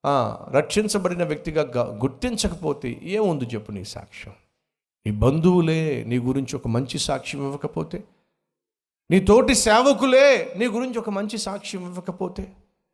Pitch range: 105-170 Hz